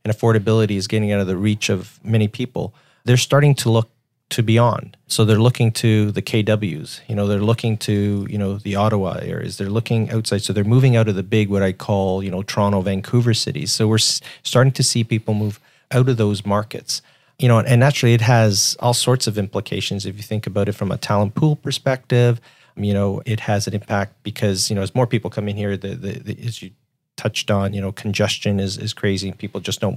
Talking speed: 230 wpm